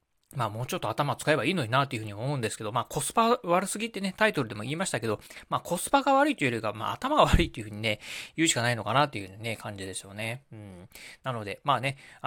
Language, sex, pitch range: Japanese, male, 115-195 Hz